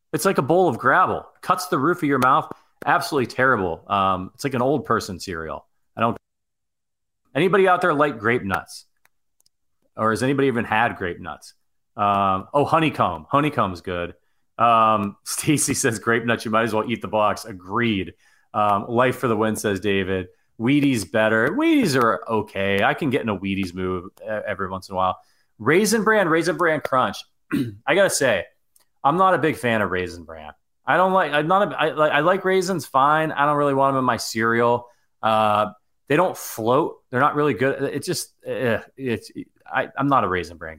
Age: 30-49